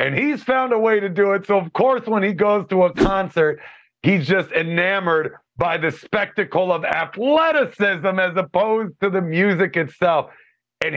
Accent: American